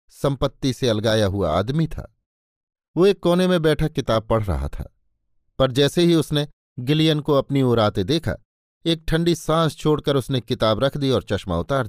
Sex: male